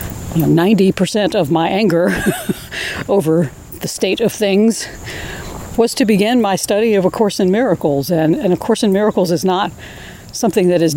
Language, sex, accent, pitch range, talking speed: English, female, American, 160-205 Hz, 160 wpm